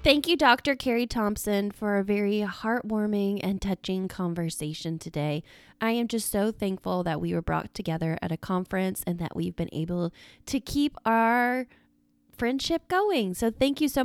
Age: 20-39